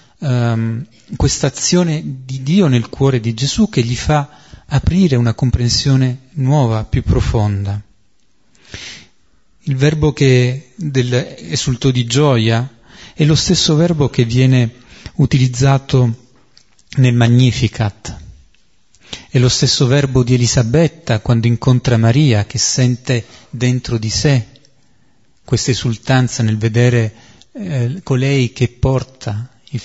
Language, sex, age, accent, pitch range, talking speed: Italian, male, 30-49, native, 120-150 Hz, 115 wpm